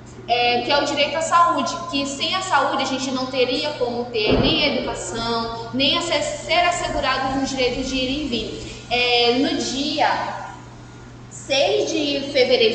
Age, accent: 10-29, Brazilian